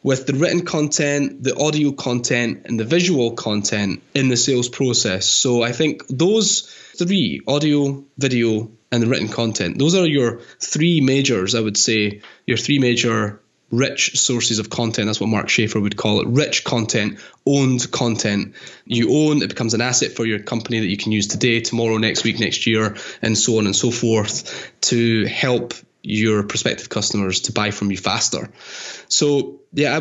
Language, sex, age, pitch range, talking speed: English, male, 10-29, 110-135 Hz, 180 wpm